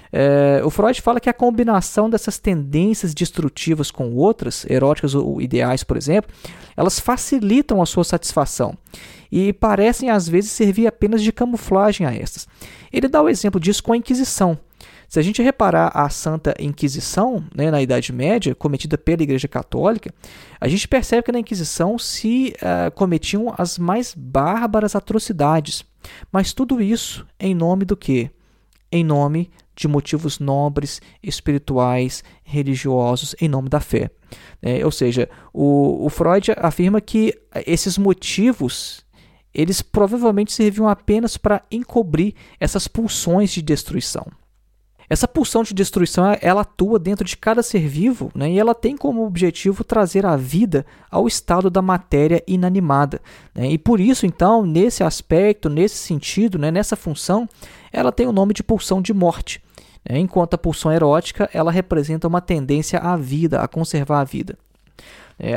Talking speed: 150 wpm